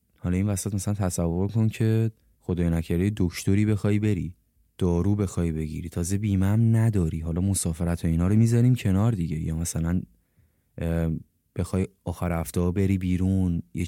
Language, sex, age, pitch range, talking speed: Persian, male, 20-39, 85-105 Hz, 145 wpm